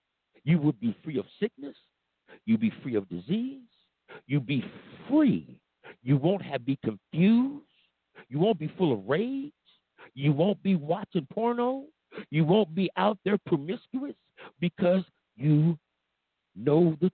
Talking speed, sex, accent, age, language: 140 wpm, male, American, 60-79, English